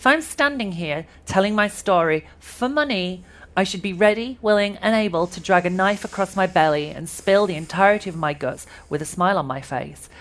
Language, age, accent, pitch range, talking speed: English, 40-59, British, 150-200 Hz, 210 wpm